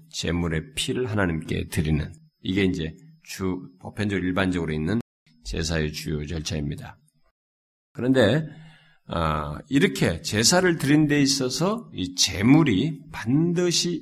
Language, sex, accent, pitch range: Korean, male, native, 90-135 Hz